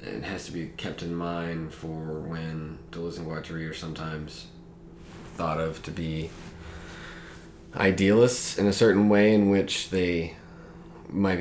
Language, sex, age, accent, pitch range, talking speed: English, male, 30-49, American, 80-85 Hz, 140 wpm